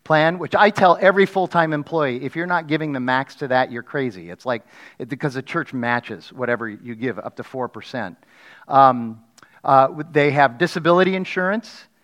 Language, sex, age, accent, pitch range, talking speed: English, male, 40-59, American, 120-170 Hz, 185 wpm